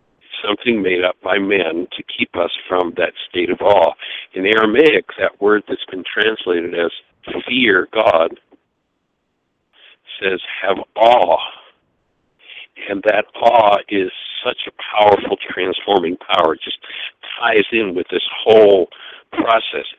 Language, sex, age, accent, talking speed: English, male, 60-79, American, 130 wpm